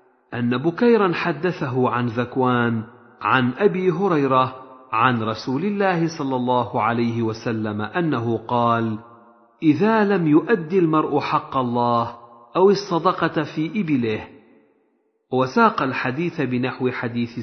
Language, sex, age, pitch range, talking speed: Arabic, male, 50-69, 120-175 Hz, 105 wpm